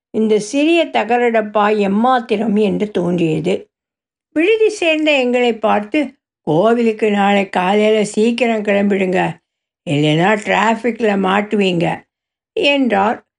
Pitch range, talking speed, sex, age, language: 205-280 Hz, 85 wpm, female, 60-79, Tamil